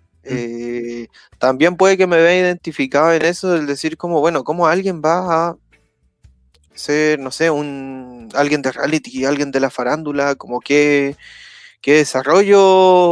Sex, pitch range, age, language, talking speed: male, 135-175 Hz, 20-39, Spanish, 145 wpm